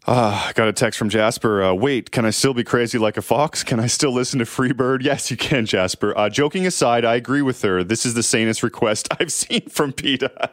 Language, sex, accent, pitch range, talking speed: English, male, American, 110-155 Hz, 240 wpm